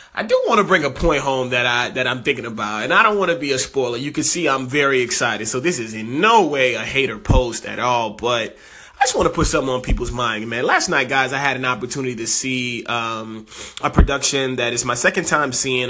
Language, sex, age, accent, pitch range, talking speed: English, male, 30-49, American, 120-135 Hz, 255 wpm